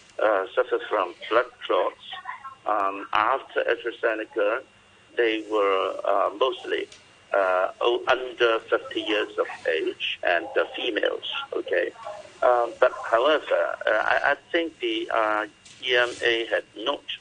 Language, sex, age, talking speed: English, male, 60-79, 120 wpm